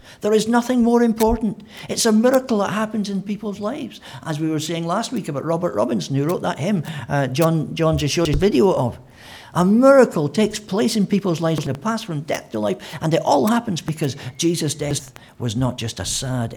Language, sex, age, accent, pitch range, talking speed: English, male, 60-79, British, 115-165 Hz, 215 wpm